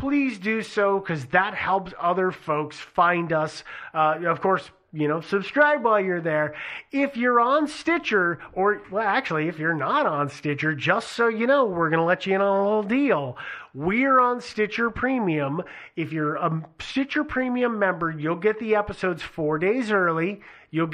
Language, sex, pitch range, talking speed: English, male, 160-225 Hz, 180 wpm